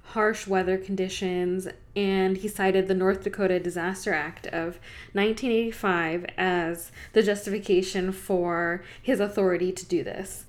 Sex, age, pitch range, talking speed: female, 10-29, 185-210 Hz, 125 wpm